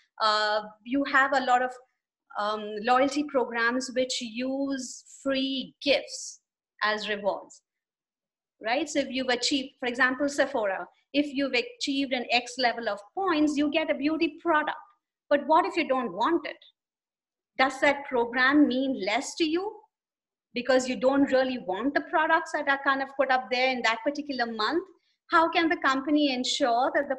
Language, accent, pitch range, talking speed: English, Indian, 240-295 Hz, 165 wpm